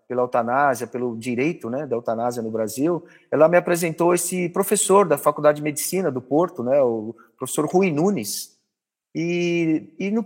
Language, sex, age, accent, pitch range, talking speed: Portuguese, male, 40-59, Brazilian, 135-205 Hz, 165 wpm